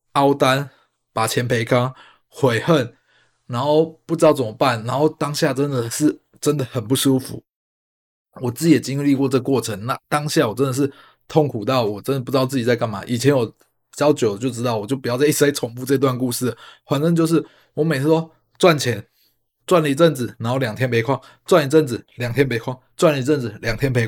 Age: 20-39